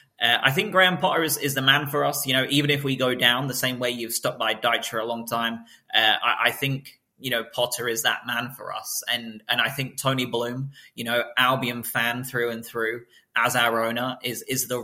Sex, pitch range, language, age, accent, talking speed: male, 115-135 Hz, English, 20-39, British, 245 wpm